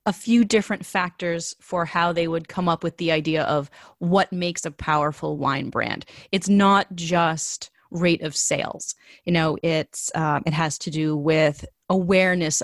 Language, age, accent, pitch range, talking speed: English, 30-49, American, 155-185 Hz, 170 wpm